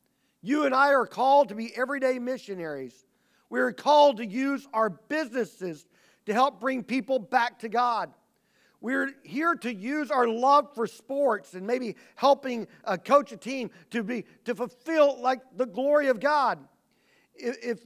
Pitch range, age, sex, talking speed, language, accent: 205-275 Hz, 40-59, male, 160 wpm, English, American